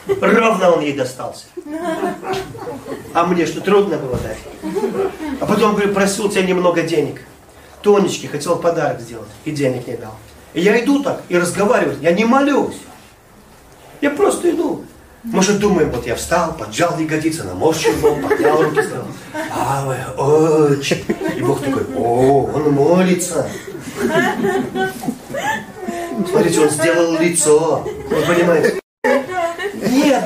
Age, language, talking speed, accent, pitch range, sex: 40-59, Russian, 125 wpm, native, 155-250 Hz, male